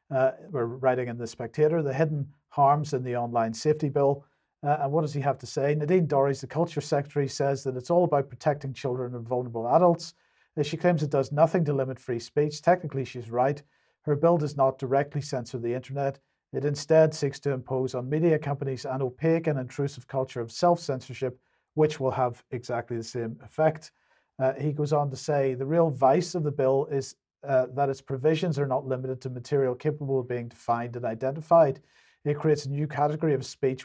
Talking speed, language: 200 wpm, English